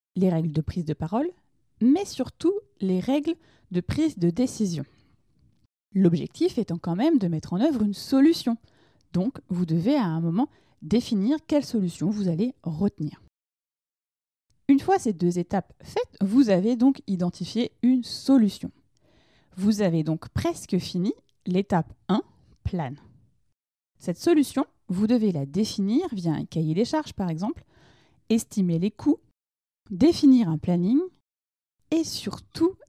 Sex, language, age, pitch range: female, French, 20-39, 175-275 Hz